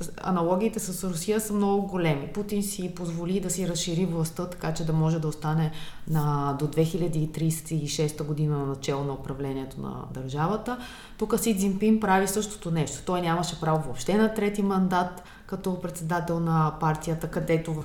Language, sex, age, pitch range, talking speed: Bulgarian, female, 20-39, 155-205 Hz, 160 wpm